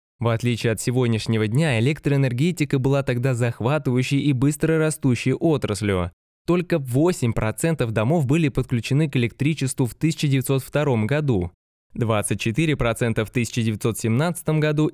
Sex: male